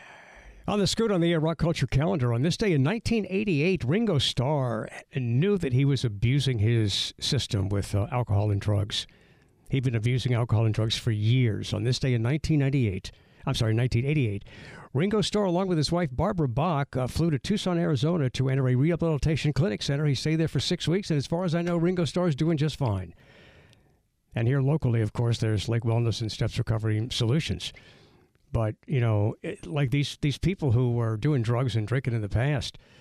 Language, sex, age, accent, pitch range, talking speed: English, male, 60-79, American, 115-155 Hz, 200 wpm